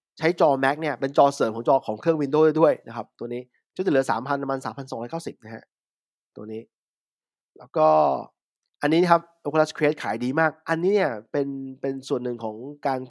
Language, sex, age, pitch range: English, male, 20-39, 125-155 Hz